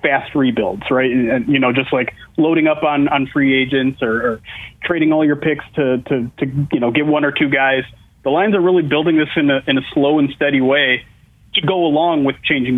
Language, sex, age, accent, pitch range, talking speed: English, male, 30-49, American, 135-165 Hz, 235 wpm